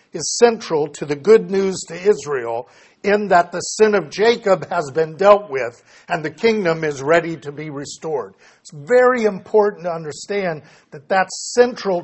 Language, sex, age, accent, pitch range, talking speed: English, male, 60-79, American, 150-195 Hz, 170 wpm